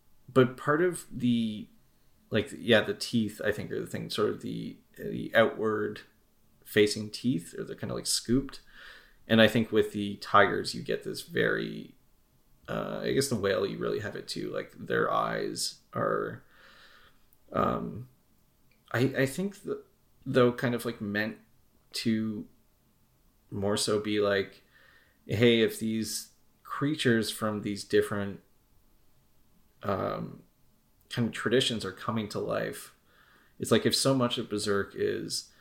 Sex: male